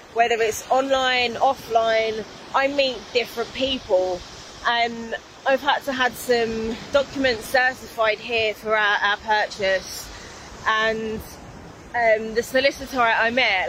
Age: 20-39